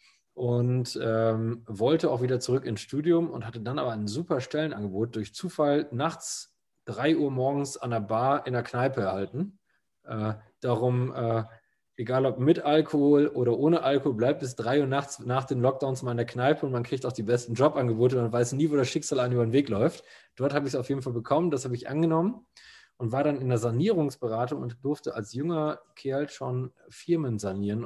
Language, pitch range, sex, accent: German, 115-150 Hz, male, German